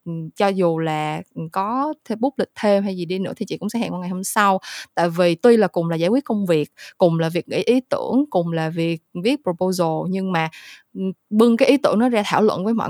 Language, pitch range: Vietnamese, 170-230 Hz